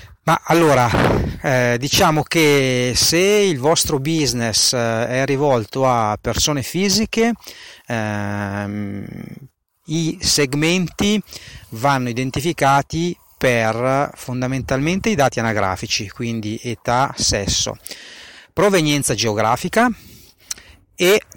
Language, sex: Italian, male